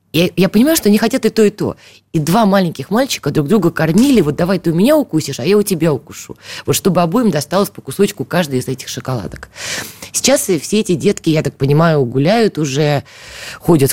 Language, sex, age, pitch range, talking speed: Russian, female, 20-39, 120-165 Hz, 205 wpm